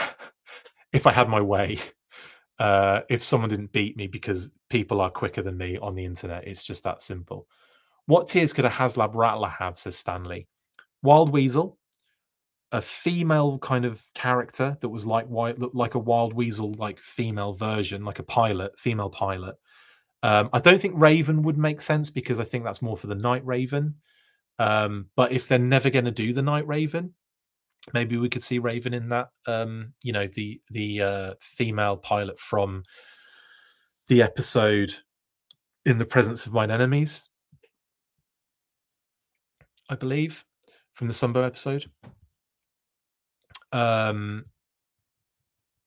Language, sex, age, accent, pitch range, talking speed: English, male, 30-49, British, 105-130 Hz, 150 wpm